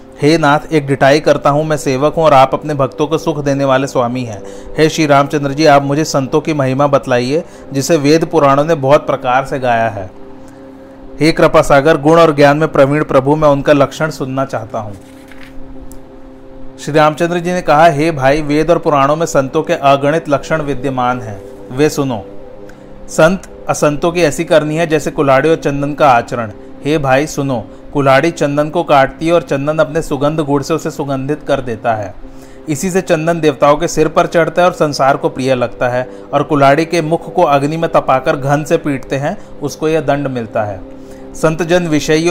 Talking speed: 195 wpm